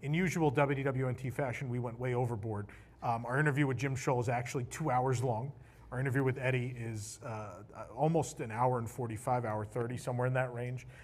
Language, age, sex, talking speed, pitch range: English, 40-59, male, 195 wpm, 120-150 Hz